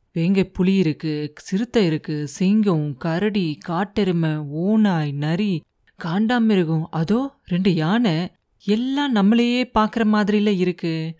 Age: 30-49